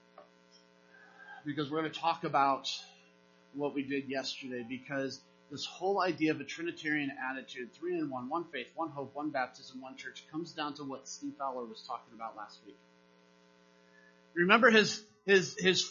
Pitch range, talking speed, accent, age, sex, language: 125-175 Hz, 160 wpm, American, 30-49, male, English